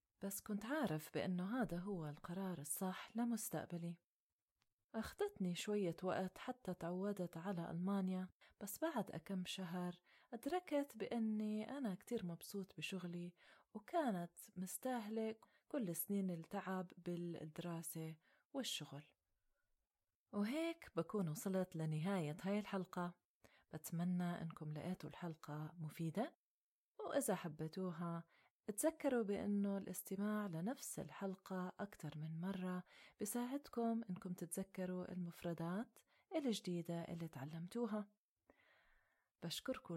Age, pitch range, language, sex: 30-49, 170-215 Hz, Arabic, female